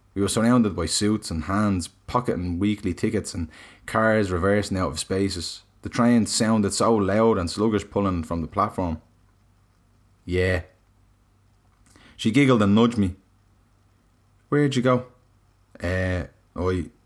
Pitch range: 95-110 Hz